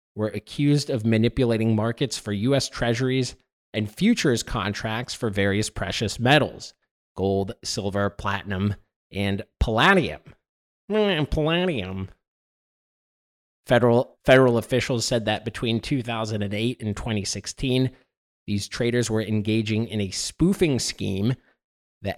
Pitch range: 105-130 Hz